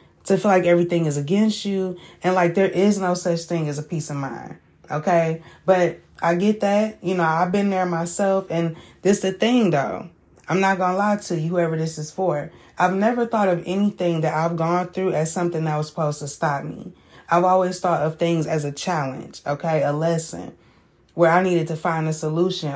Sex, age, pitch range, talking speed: female, 20-39, 160-185 Hz, 215 wpm